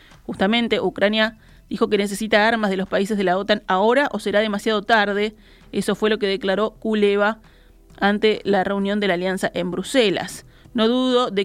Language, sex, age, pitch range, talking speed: Spanish, female, 30-49, 195-225 Hz, 180 wpm